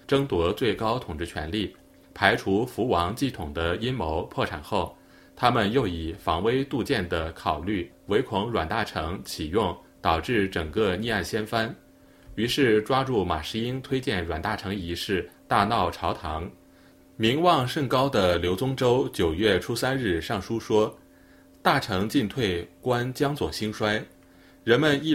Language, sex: Chinese, male